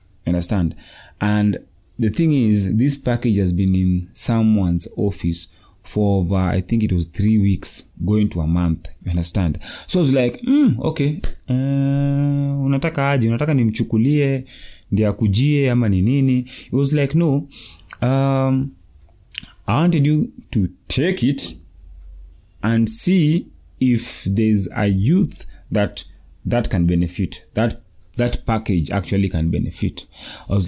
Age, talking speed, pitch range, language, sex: 30-49, 130 wpm, 90-125 Hz, English, male